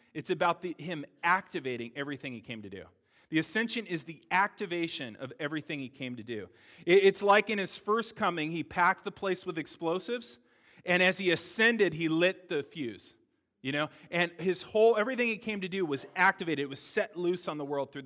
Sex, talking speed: male, 205 wpm